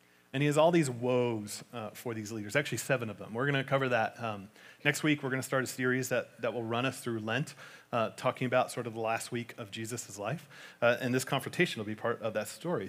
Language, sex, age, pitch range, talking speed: English, male, 40-59, 105-155 Hz, 260 wpm